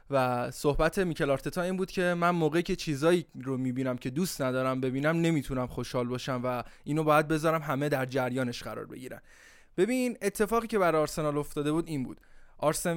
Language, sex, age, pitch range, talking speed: Persian, male, 20-39, 135-170 Hz, 180 wpm